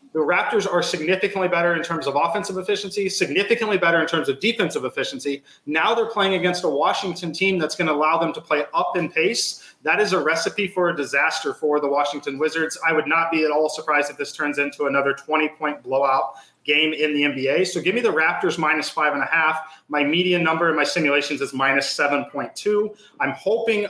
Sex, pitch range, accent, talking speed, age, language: male, 150-180 Hz, American, 215 wpm, 30-49, English